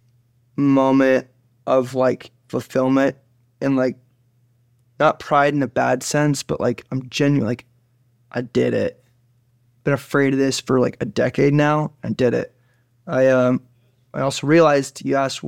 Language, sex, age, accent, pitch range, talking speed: English, male, 20-39, American, 120-140 Hz, 150 wpm